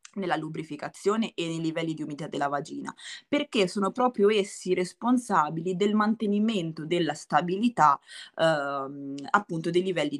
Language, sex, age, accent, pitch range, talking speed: Italian, female, 20-39, native, 145-190 Hz, 130 wpm